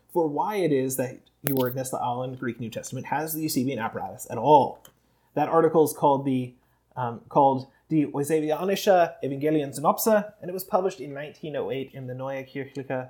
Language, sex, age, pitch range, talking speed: English, male, 30-49, 130-185 Hz, 165 wpm